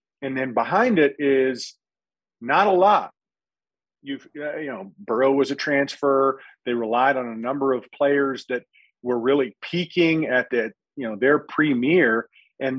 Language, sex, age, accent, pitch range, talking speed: English, male, 40-59, American, 130-165 Hz, 160 wpm